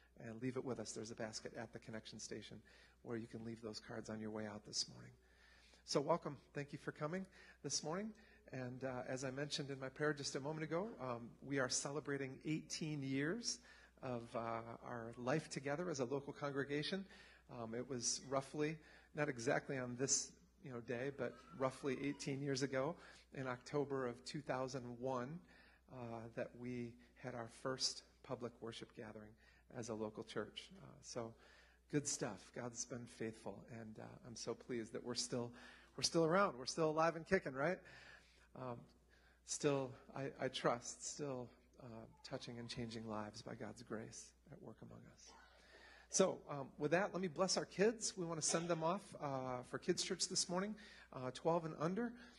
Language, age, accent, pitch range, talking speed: English, 40-59, American, 120-155 Hz, 180 wpm